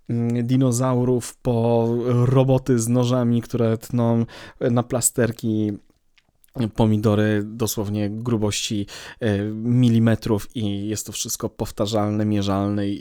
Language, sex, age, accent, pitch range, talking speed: Polish, male, 20-39, native, 105-125 Hz, 90 wpm